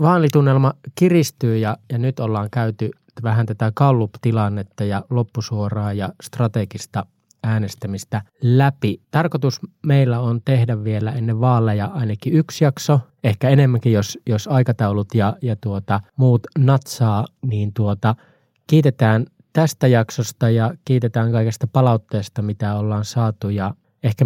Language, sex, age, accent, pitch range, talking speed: Finnish, male, 20-39, native, 105-130 Hz, 125 wpm